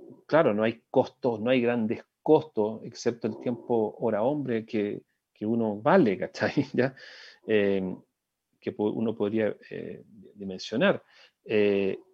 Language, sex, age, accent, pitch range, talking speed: Spanish, male, 40-59, Argentinian, 105-170 Hz, 125 wpm